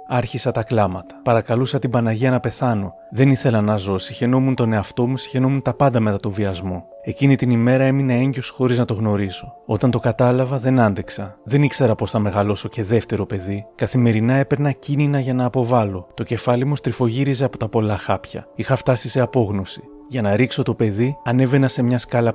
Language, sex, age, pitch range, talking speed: Greek, male, 30-49, 110-130 Hz, 190 wpm